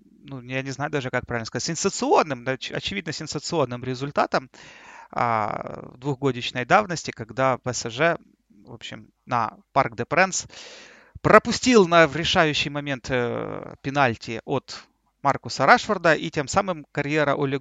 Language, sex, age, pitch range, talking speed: Russian, male, 30-49, 130-175 Hz, 115 wpm